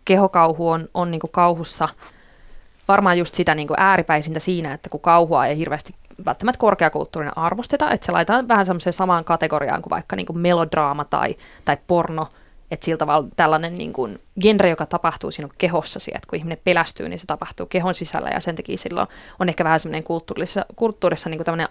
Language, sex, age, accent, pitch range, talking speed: Finnish, female, 20-39, native, 170-195 Hz, 175 wpm